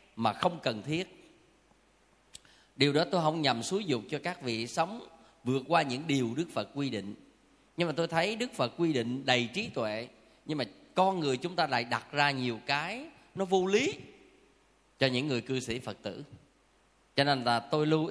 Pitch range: 125-170 Hz